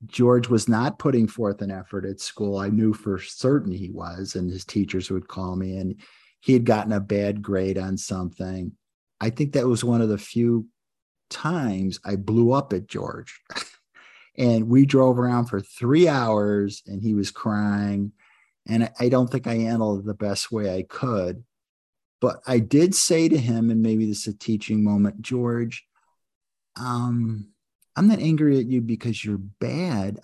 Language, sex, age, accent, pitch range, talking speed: English, male, 50-69, American, 105-140 Hz, 180 wpm